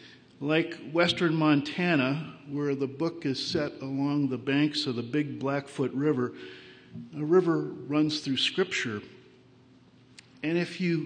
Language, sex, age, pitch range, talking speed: English, male, 50-69, 145-185 Hz, 130 wpm